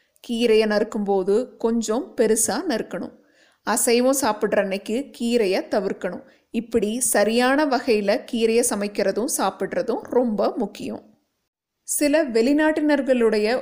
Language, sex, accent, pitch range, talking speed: Tamil, female, native, 210-265 Hz, 95 wpm